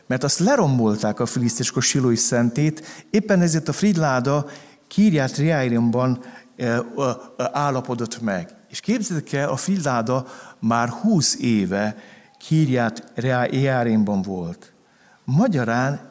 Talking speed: 90 wpm